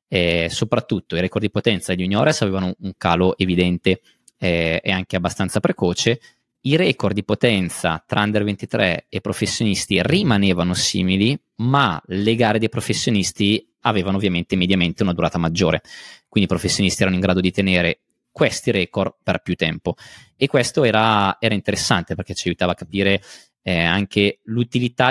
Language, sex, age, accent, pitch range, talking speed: Italian, male, 20-39, native, 90-110 Hz, 155 wpm